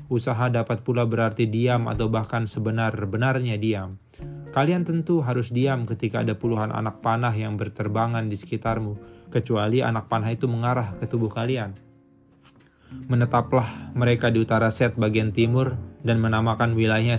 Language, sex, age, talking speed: Indonesian, male, 20-39, 140 wpm